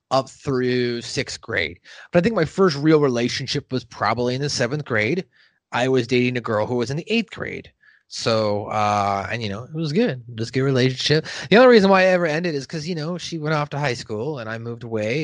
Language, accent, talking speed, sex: English, American, 240 wpm, male